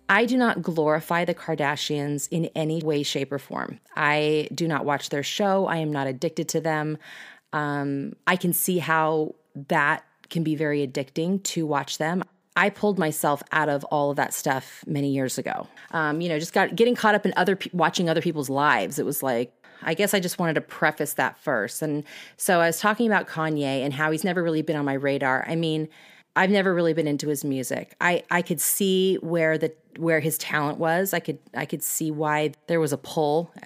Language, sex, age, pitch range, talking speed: English, female, 30-49, 145-180 Hz, 215 wpm